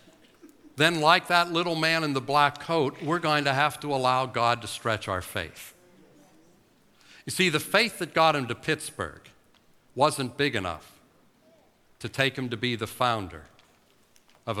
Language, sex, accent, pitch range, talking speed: English, male, American, 105-140 Hz, 165 wpm